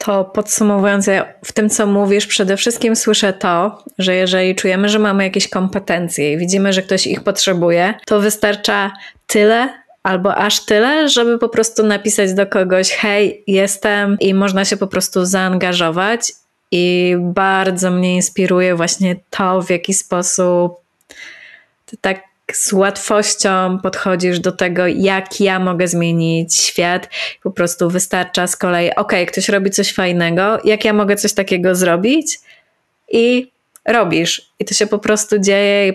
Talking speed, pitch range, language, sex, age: 150 wpm, 180-205 Hz, Polish, female, 20-39